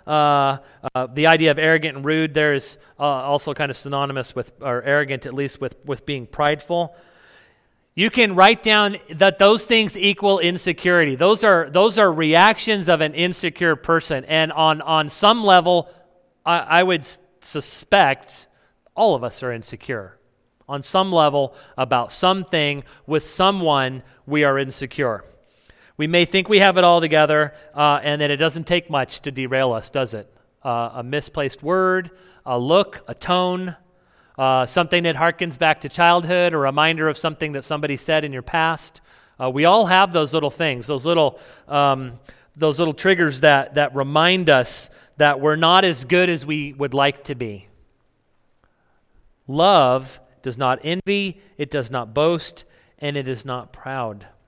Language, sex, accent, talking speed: English, male, American, 170 wpm